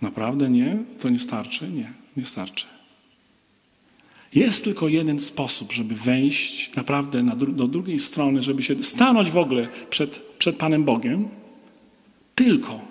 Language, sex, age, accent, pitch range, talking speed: Polish, male, 40-59, native, 125-210 Hz, 130 wpm